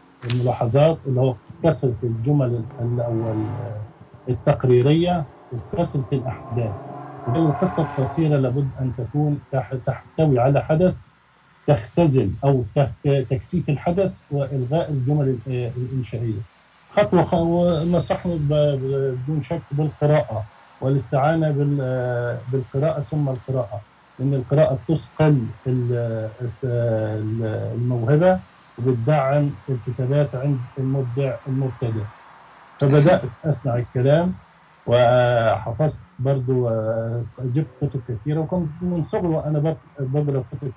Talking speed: 85 wpm